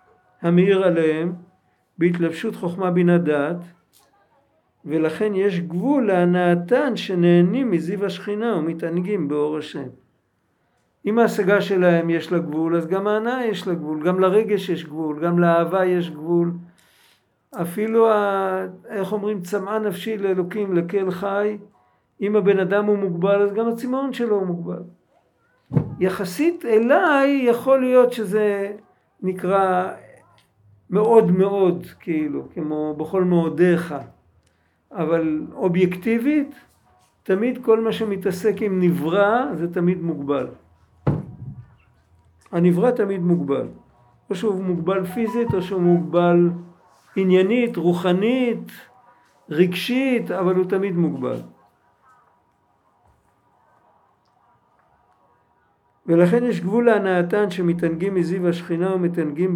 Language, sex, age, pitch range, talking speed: Hebrew, male, 50-69, 170-205 Hz, 105 wpm